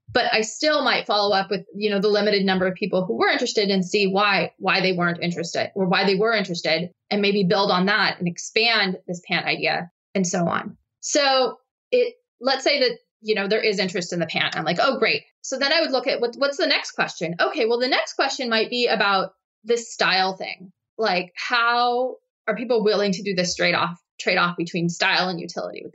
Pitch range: 185-230 Hz